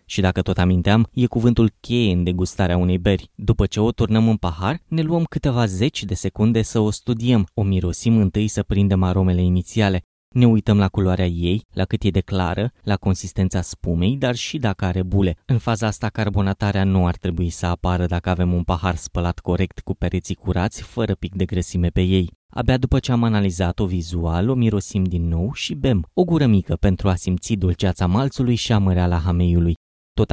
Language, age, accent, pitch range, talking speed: Romanian, 20-39, native, 90-110 Hz, 200 wpm